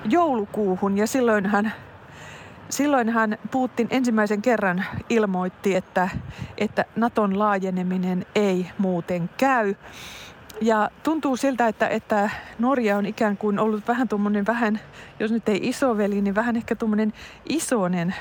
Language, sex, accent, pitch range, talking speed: Finnish, female, native, 195-230 Hz, 130 wpm